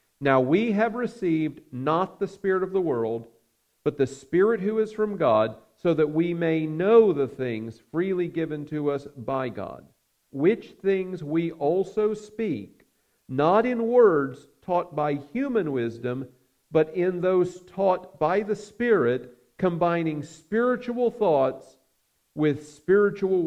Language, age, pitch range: English, 50-69, 120-175 Hz